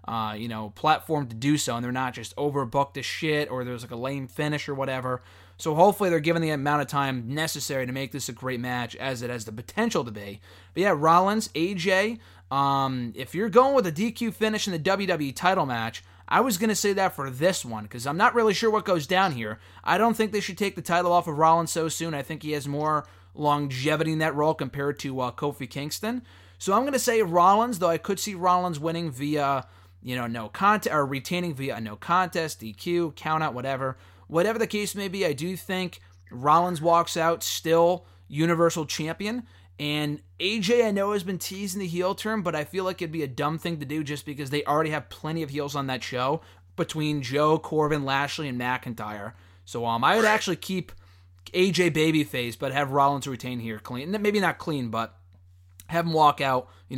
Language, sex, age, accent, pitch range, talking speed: English, male, 20-39, American, 125-175 Hz, 215 wpm